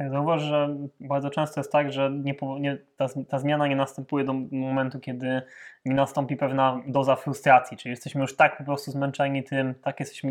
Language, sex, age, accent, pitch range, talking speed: Polish, male, 20-39, native, 130-145 Hz, 175 wpm